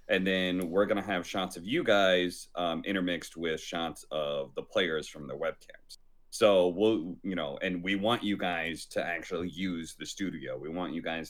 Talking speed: 200 wpm